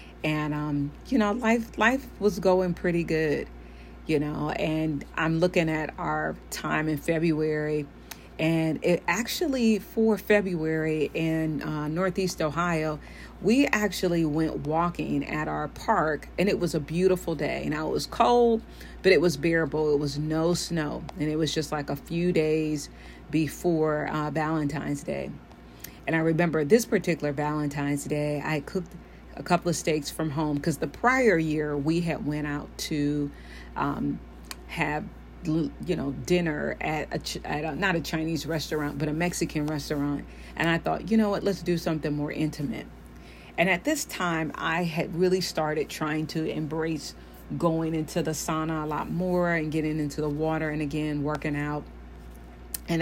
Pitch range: 150-170 Hz